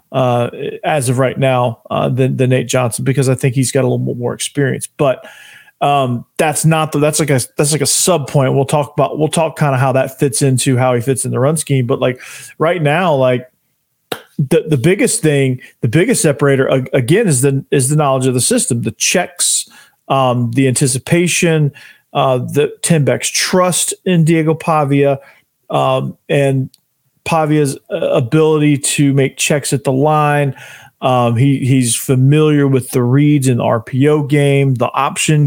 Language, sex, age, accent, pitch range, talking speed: English, male, 40-59, American, 130-150 Hz, 180 wpm